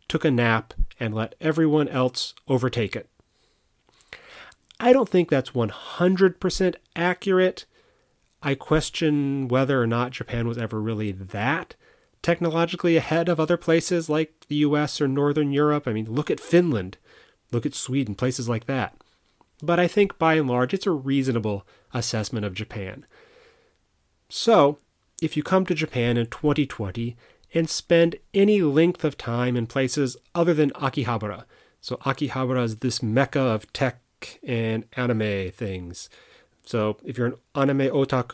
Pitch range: 115-160 Hz